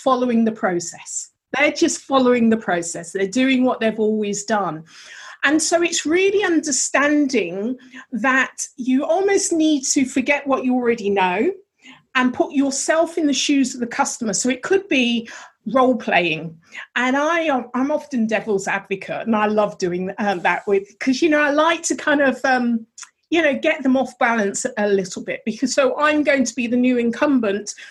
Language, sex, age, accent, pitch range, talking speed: English, female, 40-59, British, 215-290 Hz, 180 wpm